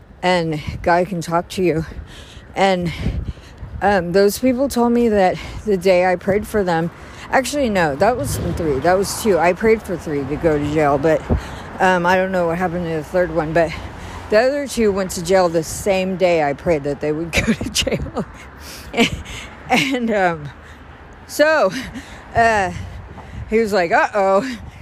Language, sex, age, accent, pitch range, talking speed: English, female, 50-69, American, 135-220 Hz, 175 wpm